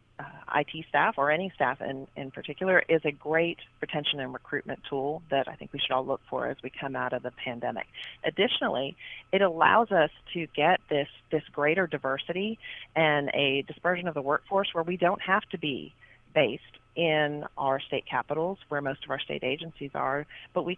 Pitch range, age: 140-170 Hz, 40-59